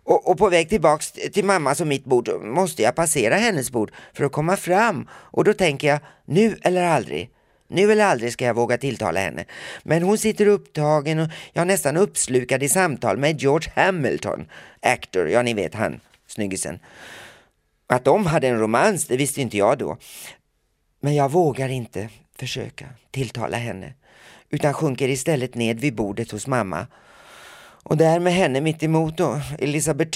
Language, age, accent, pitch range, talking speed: Swedish, 30-49, native, 120-165 Hz, 175 wpm